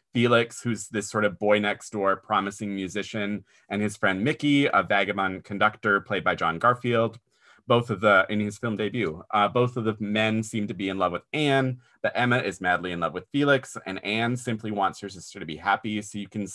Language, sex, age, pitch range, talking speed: English, male, 30-49, 95-120 Hz, 220 wpm